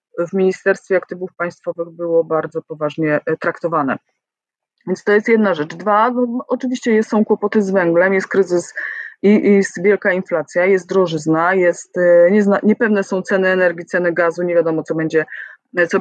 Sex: female